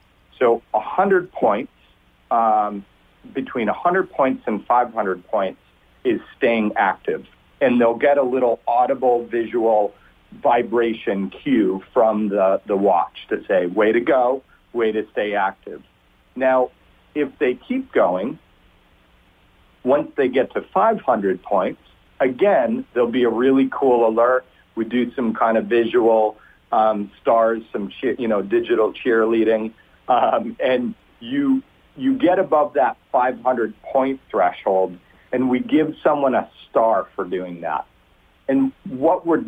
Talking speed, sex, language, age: 135 wpm, male, English, 40-59